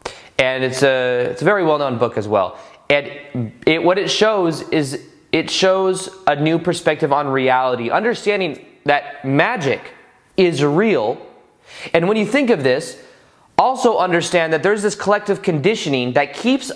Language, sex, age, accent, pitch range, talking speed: English, male, 20-39, American, 145-195 Hz, 160 wpm